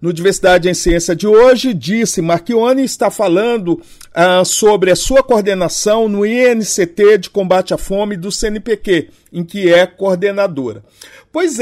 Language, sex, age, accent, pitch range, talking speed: Portuguese, male, 50-69, Brazilian, 180-220 Hz, 145 wpm